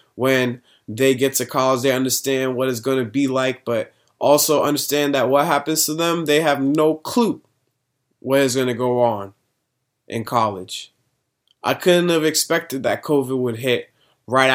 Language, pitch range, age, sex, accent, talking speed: English, 120-140 Hz, 20-39, male, American, 170 wpm